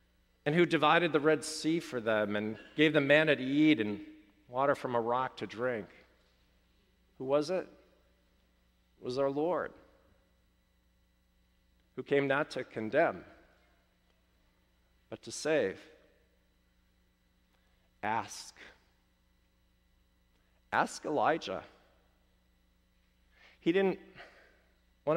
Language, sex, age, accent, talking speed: English, male, 40-59, American, 100 wpm